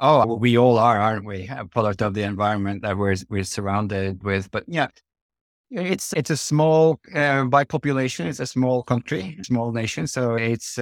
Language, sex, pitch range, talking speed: English, male, 110-130 Hz, 185 wpm